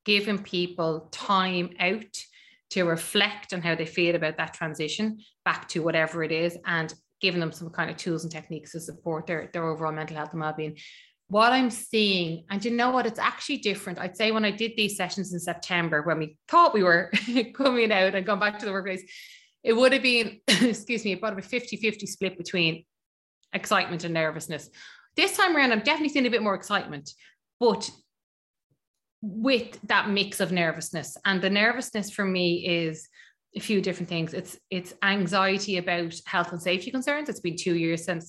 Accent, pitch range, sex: Irish, 165-210 Hz, female